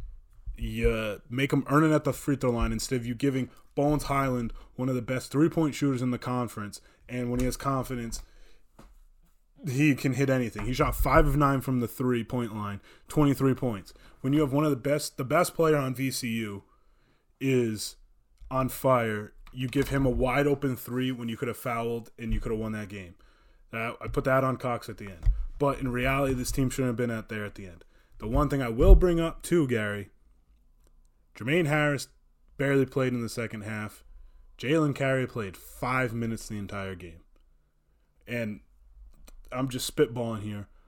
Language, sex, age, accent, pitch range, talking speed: English, male, 20-39, American, 110-135 Hz, 190 wpm